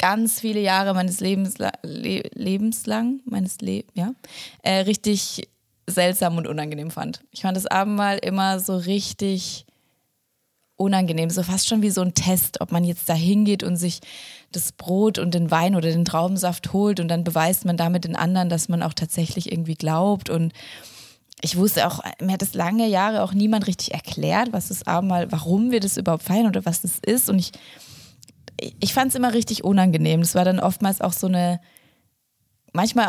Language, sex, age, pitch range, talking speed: German, female, 20-39, 170-210 Hz, 185 wpm